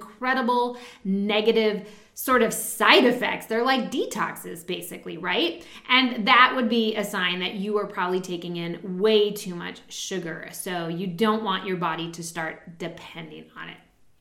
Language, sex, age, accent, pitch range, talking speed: English, female, 20-39, American, 195-265 Hz, 160 wpm